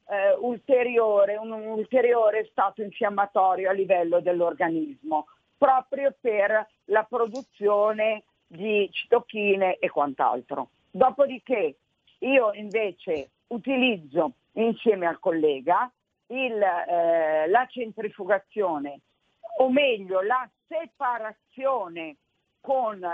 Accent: native